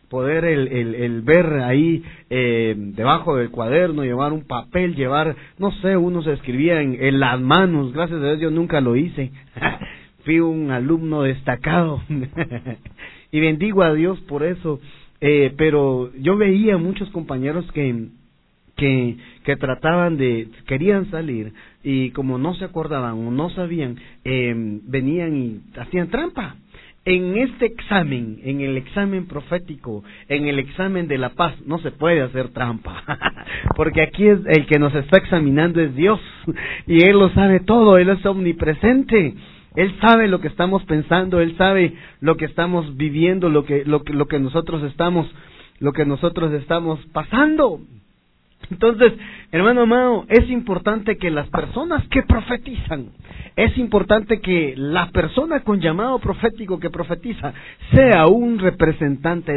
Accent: Mexican